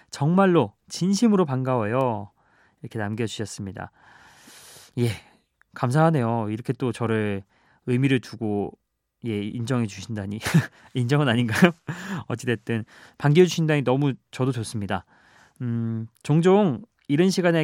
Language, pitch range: Korean, 115-150 Hz